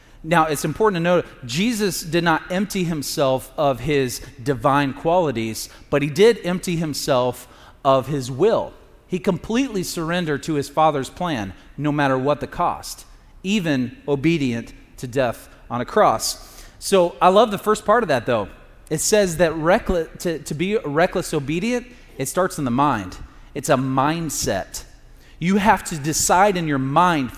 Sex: male